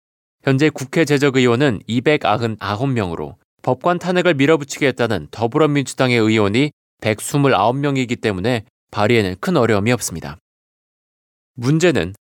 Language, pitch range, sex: Korean, 110-145 Hz, male